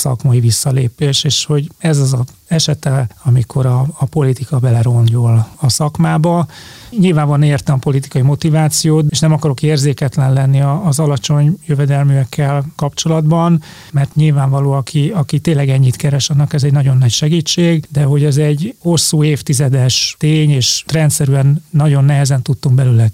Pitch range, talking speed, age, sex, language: 130-155 Hz, 145 wpm, 30-49, male, Hungarian